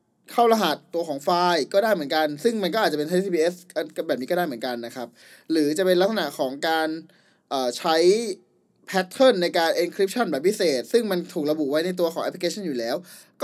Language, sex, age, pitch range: Thai, male, 20-39, 150-205 Hz